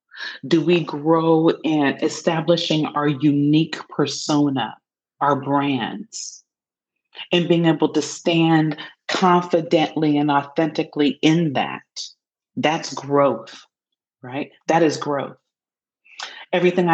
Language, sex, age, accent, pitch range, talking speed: English, female, 40-59, American, 145-170 Hz, 95 wpm